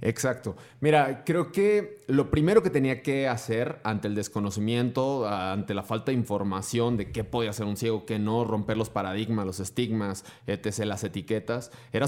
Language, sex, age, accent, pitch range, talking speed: Spanish, male, 30-49, Mexican, 105-135 Hz, 175 wpm